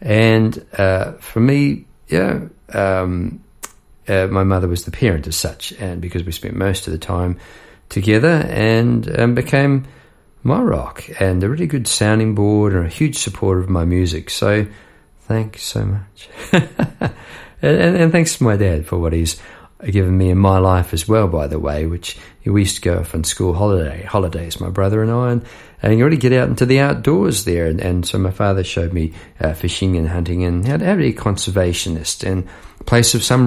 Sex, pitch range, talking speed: male, 90-115 Hz, 195 wpm